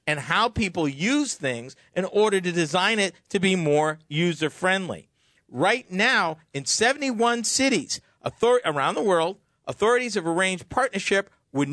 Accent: American